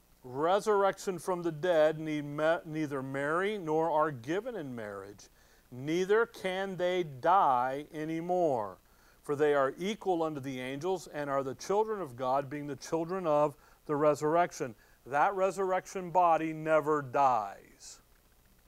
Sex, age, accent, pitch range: male, 50-69, American, 135-170 Hz